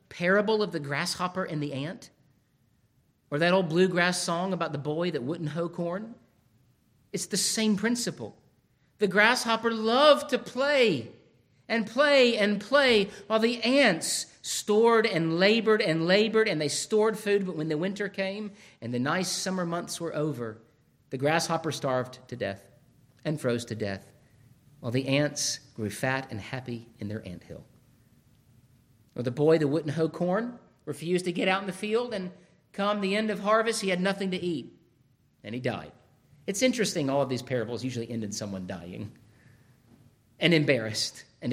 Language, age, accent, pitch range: English, 50-69, American, 130-200 Hz